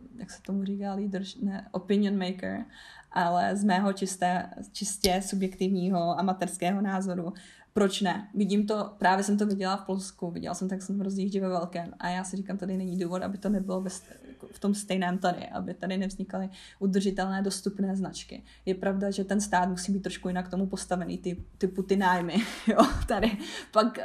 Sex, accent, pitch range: female, native, 185-205 Hz